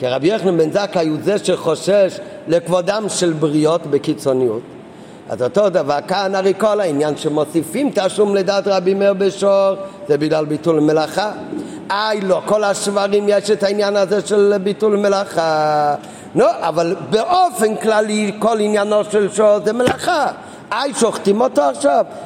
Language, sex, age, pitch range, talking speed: Hebrew, male, 50-69, 165-220 Hz, 150 wpm